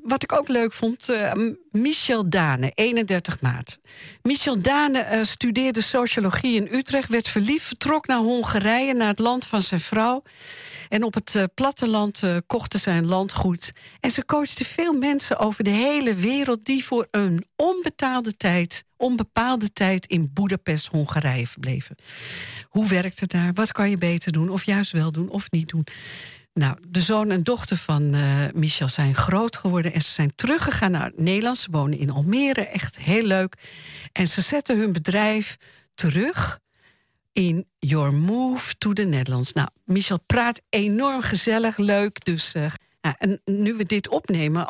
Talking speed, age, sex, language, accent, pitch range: 160 wpm, 50-69, female, Dutch, Dutch, 165-235 Hz